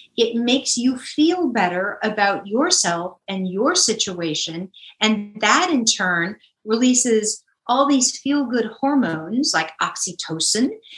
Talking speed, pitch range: 115 wpm, 200-265 Hz